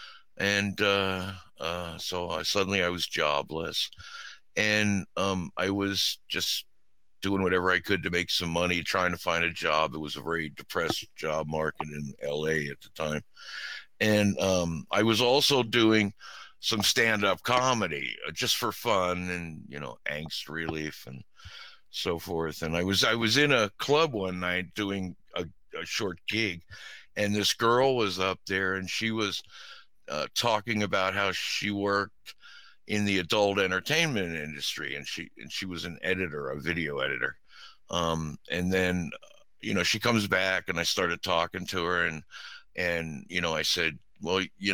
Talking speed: 170 wpm